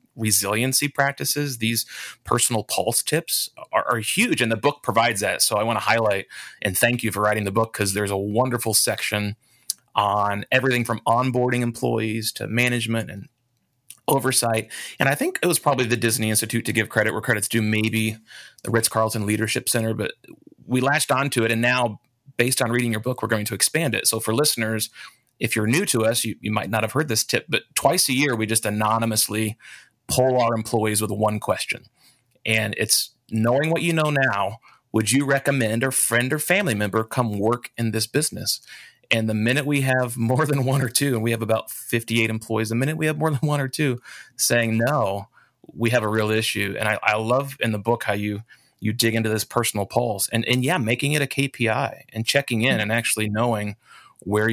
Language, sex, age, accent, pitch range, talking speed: English, male, 30-49, American, 110-130 Hz, 205 wpm